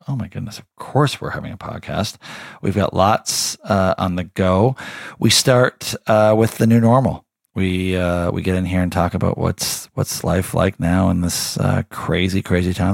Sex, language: male, English